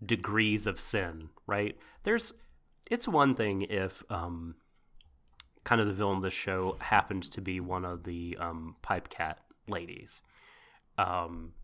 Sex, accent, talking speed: male, American, 145 wpm